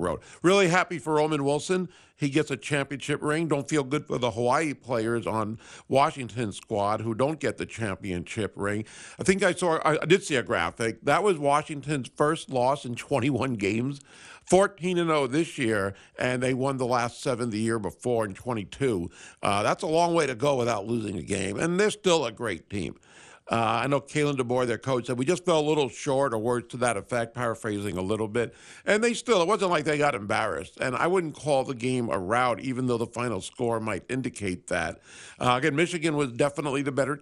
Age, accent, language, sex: 50-69, American, English, male